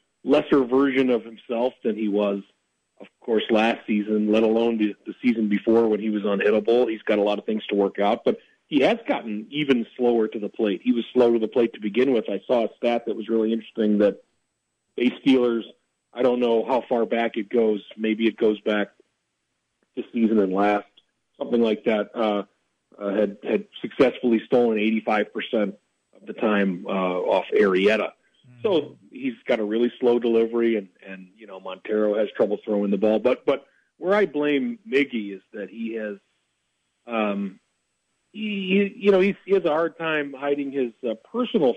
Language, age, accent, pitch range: English, 40-59, American, 105-125 Hz